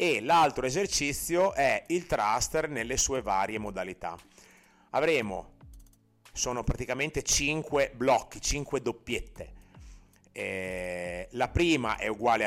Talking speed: 105 wpm